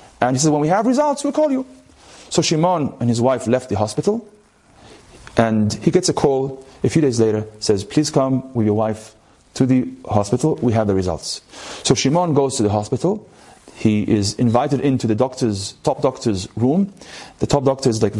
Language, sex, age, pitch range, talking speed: English, male, 30-49, 115-155 Hz, 200 wpm